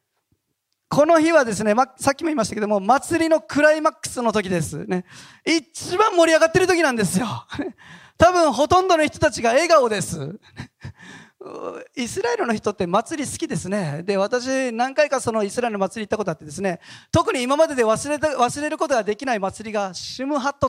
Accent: native